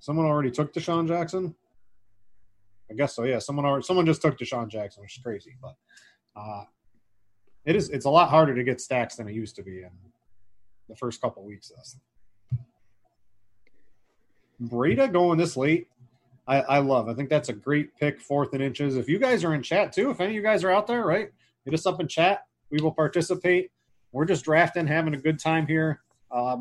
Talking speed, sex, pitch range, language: 200 wpm, male, 115-155 Hz, English